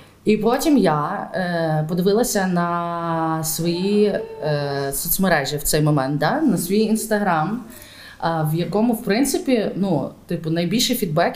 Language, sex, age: Ukrainian, female, 20-39